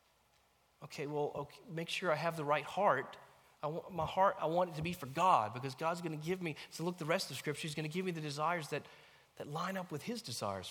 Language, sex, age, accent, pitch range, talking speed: English, male, 30-49, American, 140-205 Hz, 260 wpm